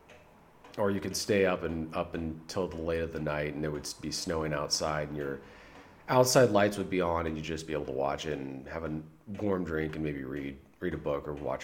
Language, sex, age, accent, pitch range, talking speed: English, male, 30-49, American, 75-100 Hz, 240 wpm